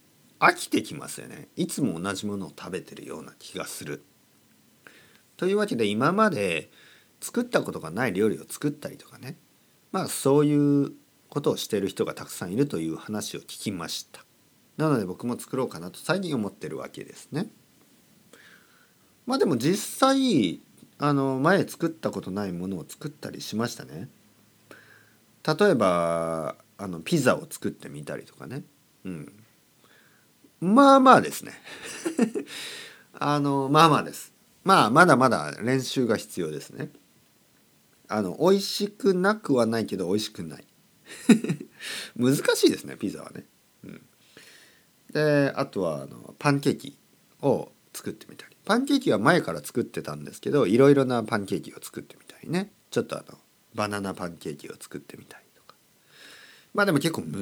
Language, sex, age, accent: Japanese, male, 40-59, native